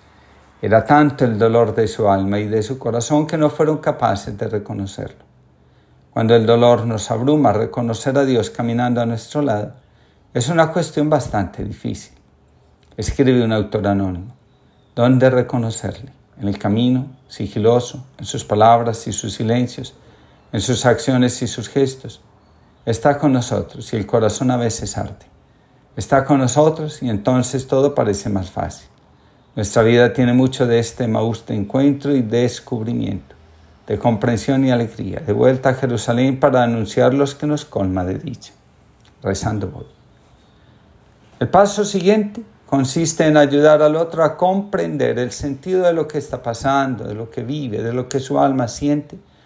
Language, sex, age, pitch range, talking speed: Spanish, male, 50-69, 110-140 Hz, 155 wpm